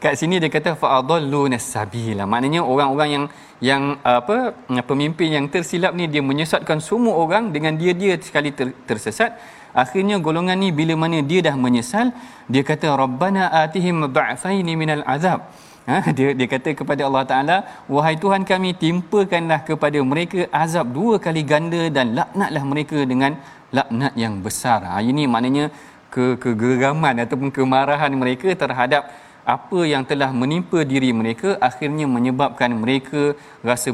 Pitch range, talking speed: 130-165 Hz, 145 wpm